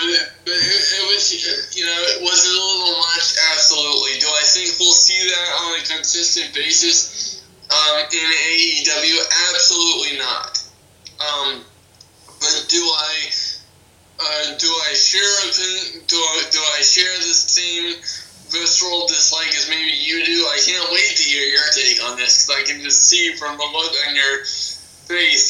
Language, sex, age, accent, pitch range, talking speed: English, male, 20-39, American, 150-185 Hz, 155 wpm